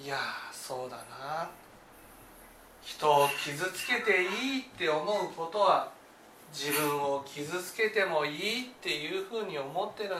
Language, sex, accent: Japanese, male, native